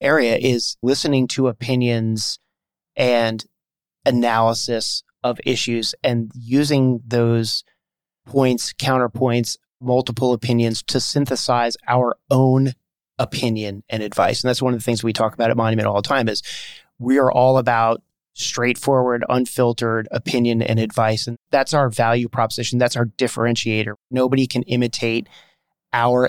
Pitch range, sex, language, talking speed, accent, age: 115-130 Hz, male, English, 135 wpm, American, 30-49